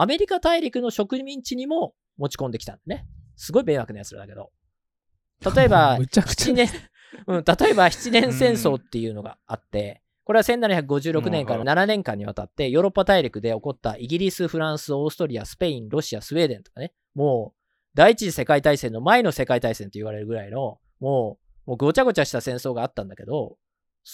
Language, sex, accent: Japanese, male, native